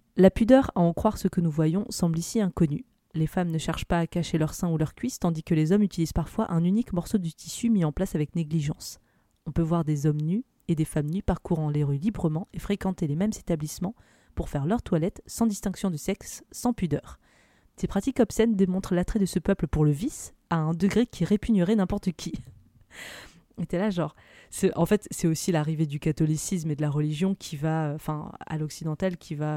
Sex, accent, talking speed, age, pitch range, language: female, French, 225 wpm, 20-39, 160-205 Hz, French